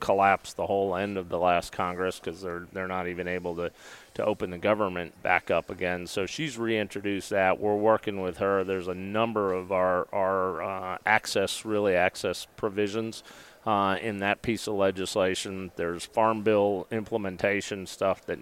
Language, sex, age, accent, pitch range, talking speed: English, male, 30-49, American, 90-100 Hz, 175 wpm